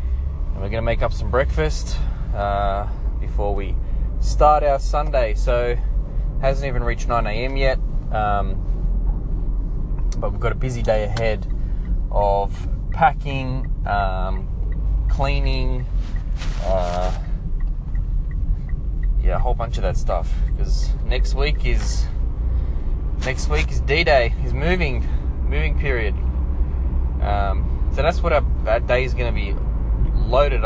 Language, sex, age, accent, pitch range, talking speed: English, male, 20-39, Australian, 70-115 Hz, 120 wpm